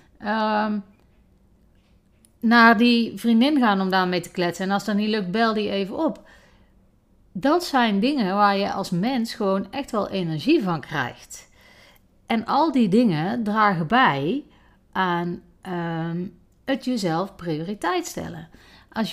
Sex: female